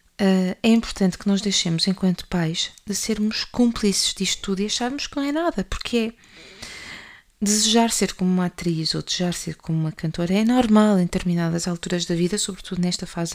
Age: 20-39